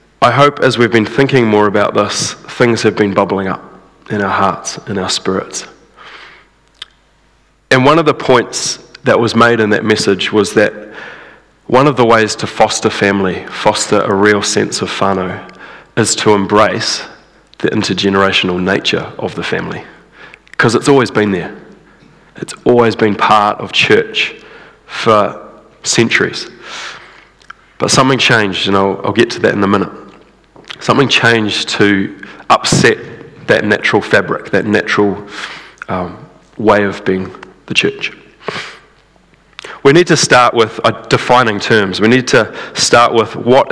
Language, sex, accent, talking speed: English, male, New Zealand, 150 wpm